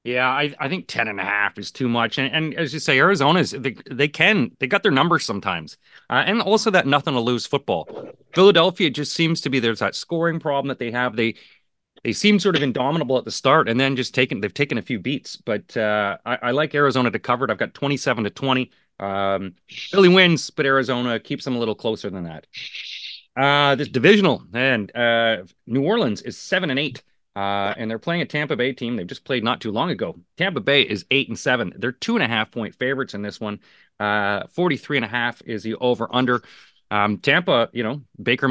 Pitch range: 115-145 Hz